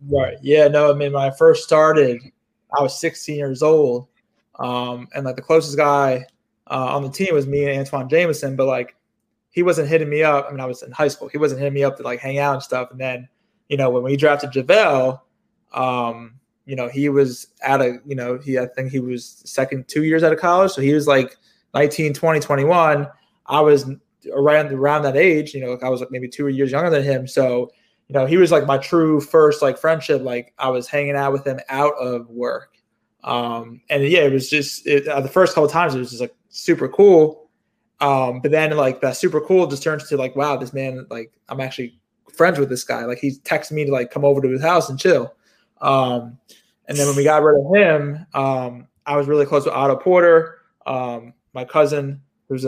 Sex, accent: male, American